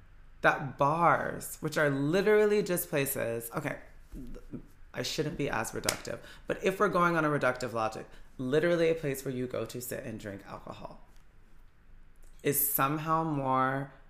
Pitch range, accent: 115-150 Hz, American